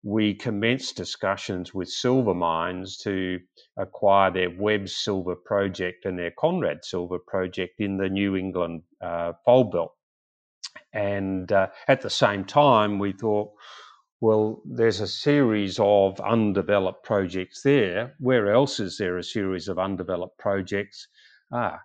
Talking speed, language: 135 wpm, English